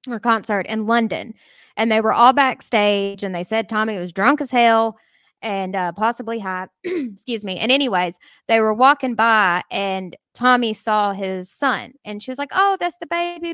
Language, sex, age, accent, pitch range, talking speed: English, female, 20-39, American, 210-275 Hz, 185 wpm